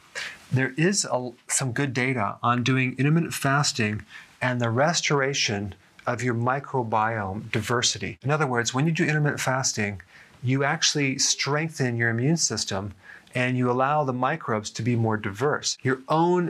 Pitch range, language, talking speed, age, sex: 115-140 Hz, English, 150 wpm, 30-49, male